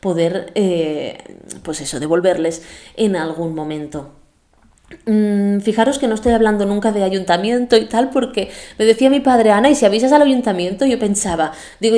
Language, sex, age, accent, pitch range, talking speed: Spanish, female, 20-39, Spanish, 165-220 Hz, 165 wpm